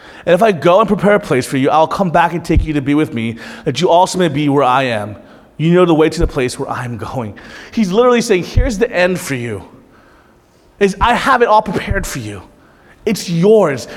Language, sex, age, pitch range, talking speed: English, male, 30-49, 160-250 Hz, 240 wpm